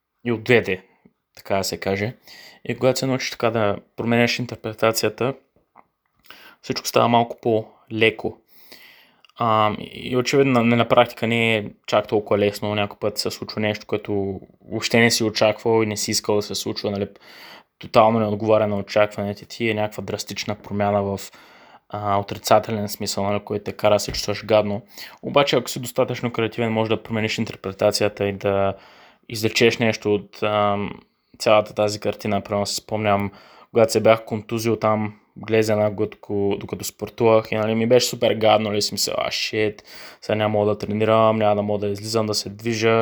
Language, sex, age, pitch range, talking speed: Bulgarian, male, 20-39, 105-115 Hz, 170 wpm